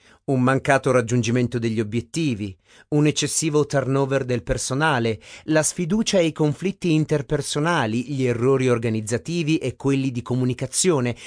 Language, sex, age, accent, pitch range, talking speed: Italian, male, 40-59, native, 115-155 Hz, 120 wpm